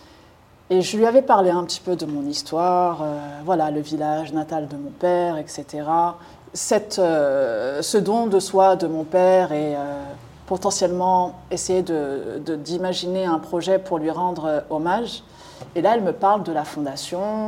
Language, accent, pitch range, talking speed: French, French, 160-205 Hz, 170 wpm